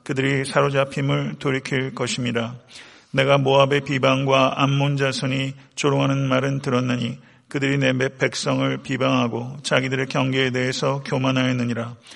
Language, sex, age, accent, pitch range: Korean, male, 40-59, native, 125-140 Hz